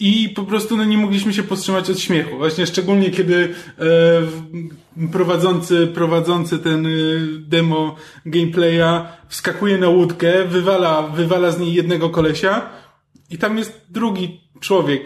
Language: Polish